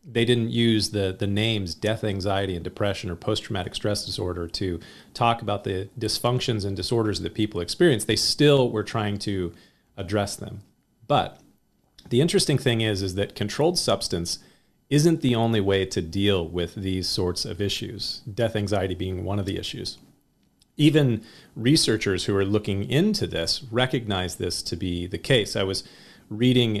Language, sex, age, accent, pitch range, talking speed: English, male, 40-59, American, 95-120 Hz, 165 wpm